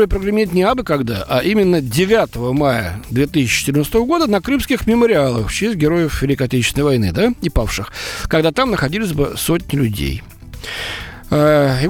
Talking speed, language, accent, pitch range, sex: 145 wpm, Russian, native, 130-210 Hz, male